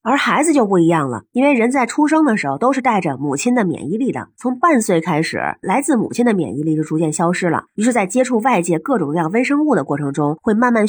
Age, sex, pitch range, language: 30-49, female, 160-240 Hz, Chinese